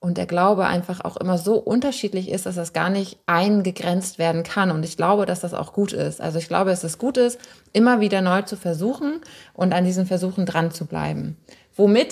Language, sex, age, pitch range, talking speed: German, female, 20-39, 165-205 Hz, 220 wpm